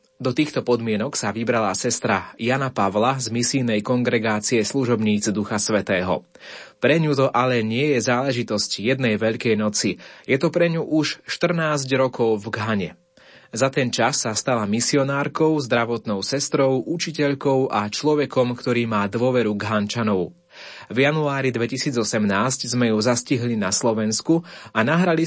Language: Slovak